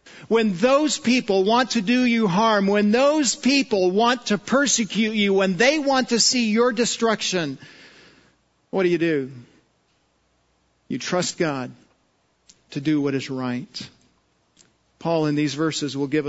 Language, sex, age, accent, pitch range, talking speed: English, male, 50-69, American, 140-185 Hz, 145 wpm